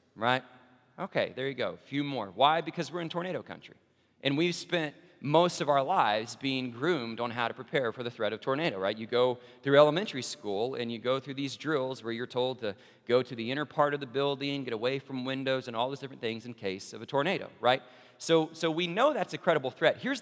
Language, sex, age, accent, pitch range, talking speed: English, male, 40-59, American, 125-165 Hz, 235 wpm